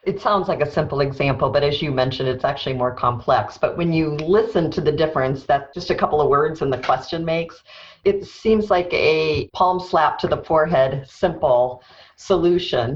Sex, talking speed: female, 195 wpm